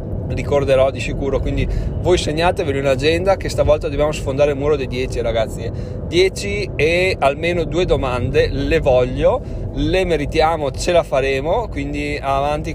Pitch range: 120-150 Hz